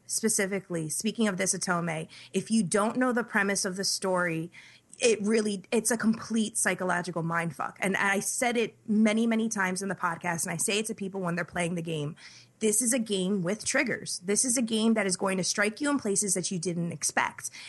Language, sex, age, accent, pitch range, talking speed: English, female, 20-39, American, 180-220 Hz, 215 wpm